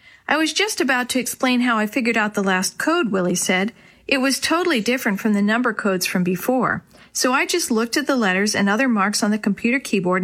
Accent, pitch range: American, 195-265 Hz